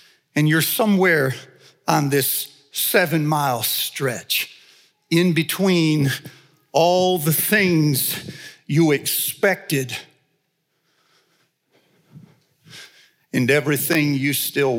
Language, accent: English, American